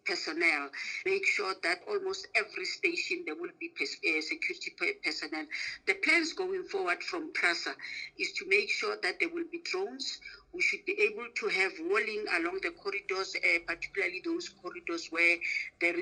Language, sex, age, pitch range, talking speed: English, female, 50-69, 340-395 Hz, 160 wpm